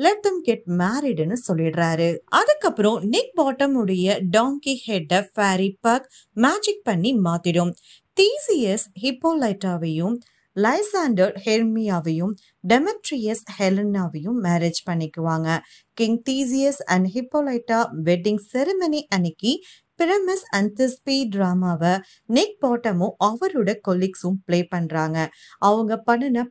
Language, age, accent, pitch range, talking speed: Tamil, 30-49, native, 180-260 Hz, 65 wpm